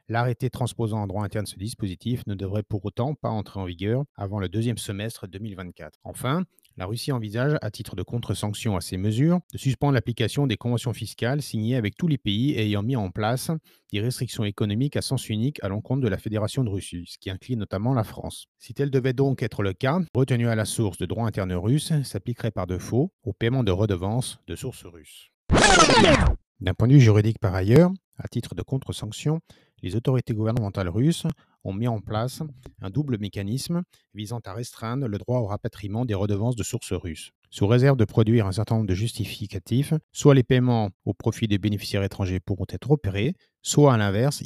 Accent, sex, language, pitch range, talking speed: French, male, French, 105-125 Hz, 200 wpm